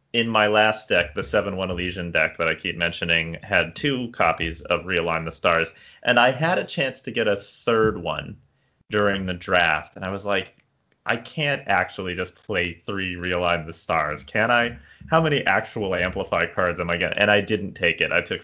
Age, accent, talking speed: 30-49, American, 200 wpm